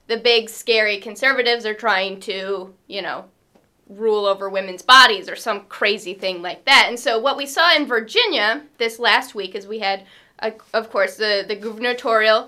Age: 10-29